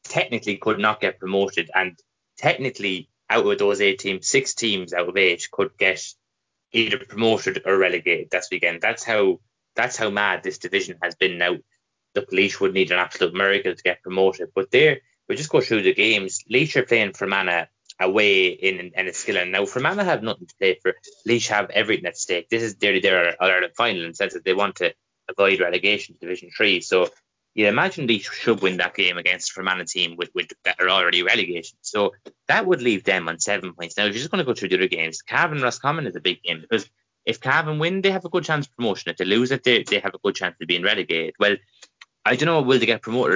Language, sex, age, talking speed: English, male, 20-39, 235 wpm